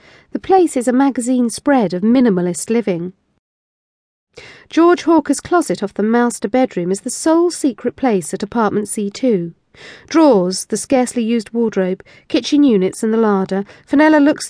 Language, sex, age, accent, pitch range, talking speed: English, female, 40-59, British, 205-280 Hz, 150 wpm